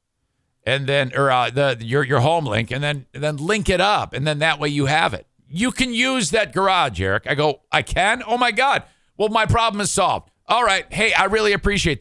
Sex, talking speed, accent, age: male, 240 wpm, American, 50-69